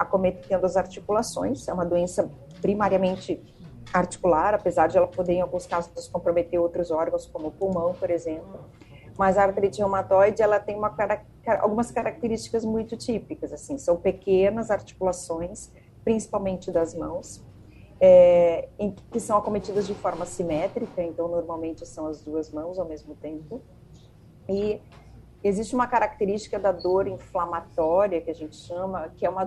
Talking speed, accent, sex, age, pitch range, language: 145 wpm, Brazilian, female, 40-59, 175-205 Hz, Portuguese